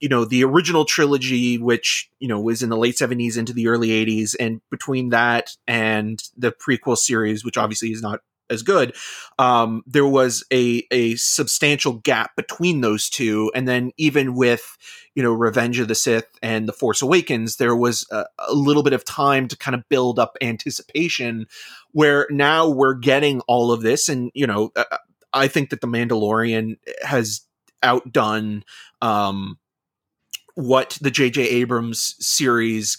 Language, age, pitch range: English, 30-49, 115-140 Hz